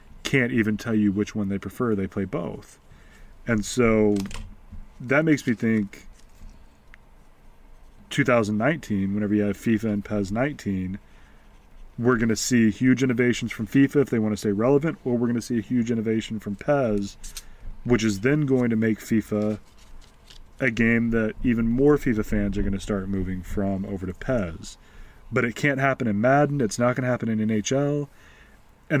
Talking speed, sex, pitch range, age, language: 180 wpm, male, 100-125 Hz, 30-49, English